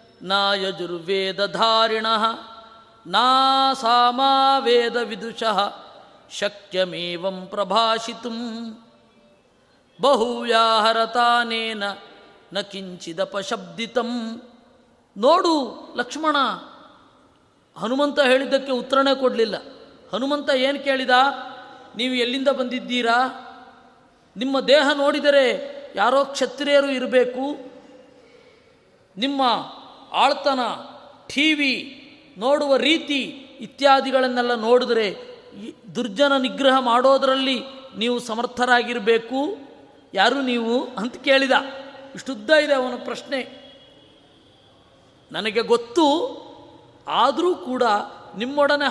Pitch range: 225-275 Hz